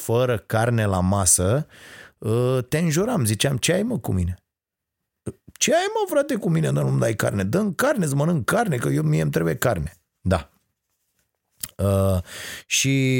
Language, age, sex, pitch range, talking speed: Romanian, 30-49, male, 90-115 Hz, 160 wpm